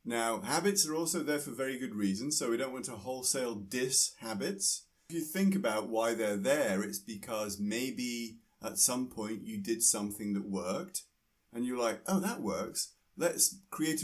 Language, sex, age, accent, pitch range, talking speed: English, male, 30-49, British, 100-145 Hz, 180 wpm